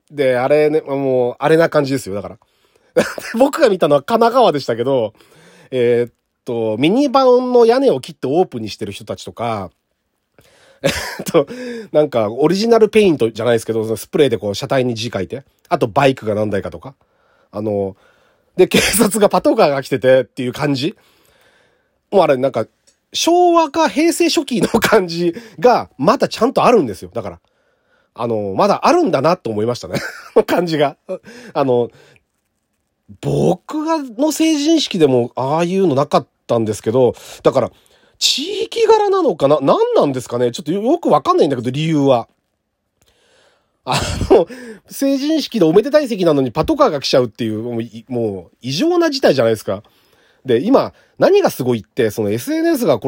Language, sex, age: Japanese, male, 40-59